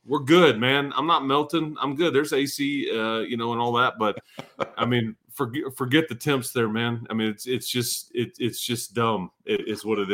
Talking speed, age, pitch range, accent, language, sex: 215 wpm, 30-49, 110-135 Hz, American, English, male